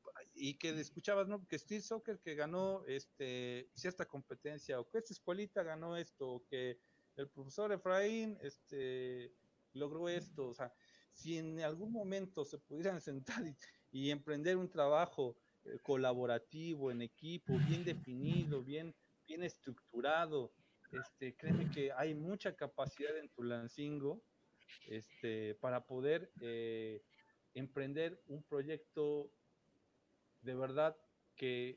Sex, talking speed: male, 120 wpm